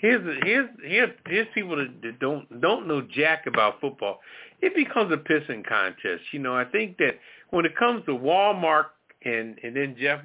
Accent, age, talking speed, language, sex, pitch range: American, 50-69, 175 wpm, English, male, 130-175 Hz